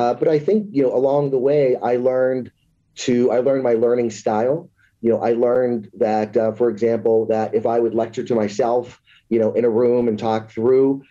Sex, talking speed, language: male, 215 wpm, English